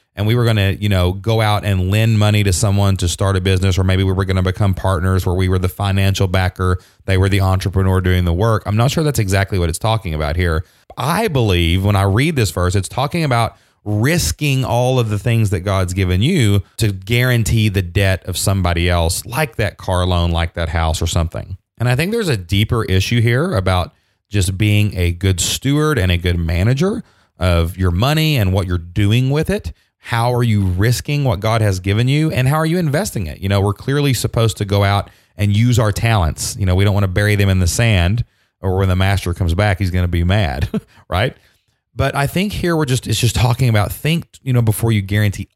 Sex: male